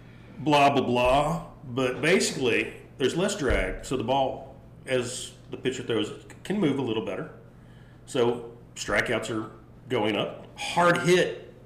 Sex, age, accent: male, 40-59, American